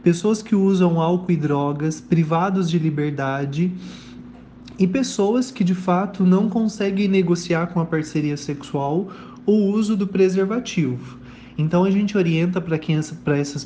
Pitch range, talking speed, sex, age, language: 145-180 Hz, 135 wpm, male, 20-39, Portuguese